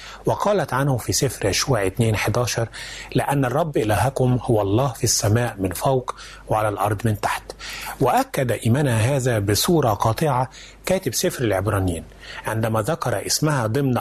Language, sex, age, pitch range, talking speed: Arabic, male, 30-49, 105-130 Hz, 135 wpm